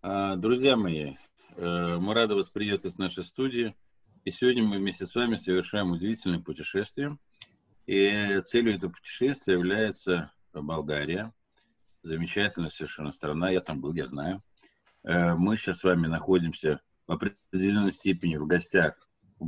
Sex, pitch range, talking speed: male, 80-100 Hz, 130 wpm